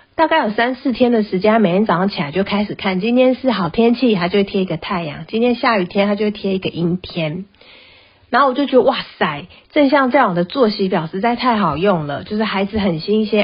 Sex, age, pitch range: female, 30-49, 180-235 Hz